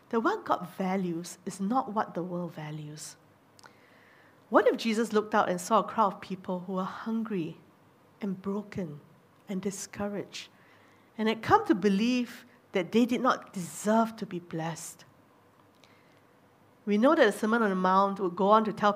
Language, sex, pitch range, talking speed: English, female, 180-230 Hz, 170 wpm